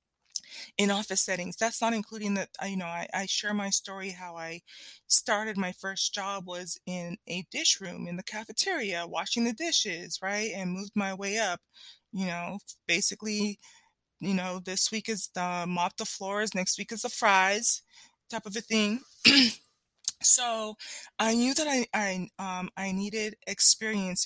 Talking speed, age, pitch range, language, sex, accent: 170 wpm, 20-39, 180-220 Hz, English, female, American